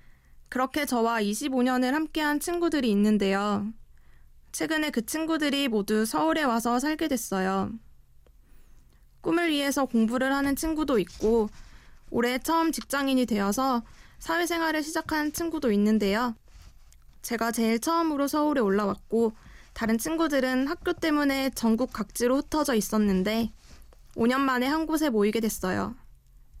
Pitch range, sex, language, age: 215-300 Hz, female, Korean, 20-39